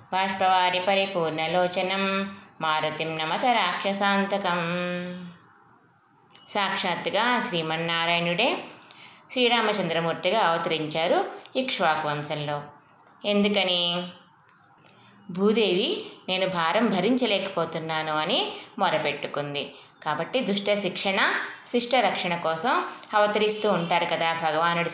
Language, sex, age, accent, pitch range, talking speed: Telugu, female, 20-39, native, 160-200 Hz, 65 wpm